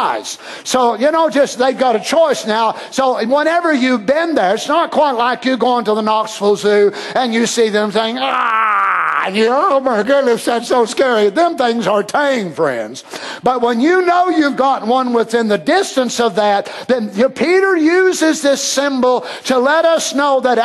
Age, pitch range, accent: 50-69, 230-285 Hz, American